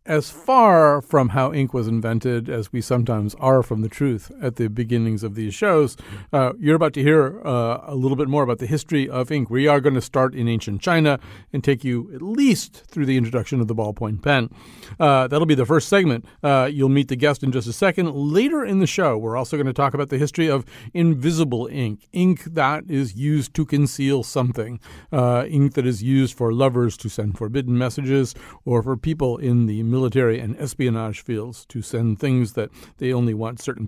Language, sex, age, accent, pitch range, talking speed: English, male, 40-59, American, 120-155 Hz, 215 wpm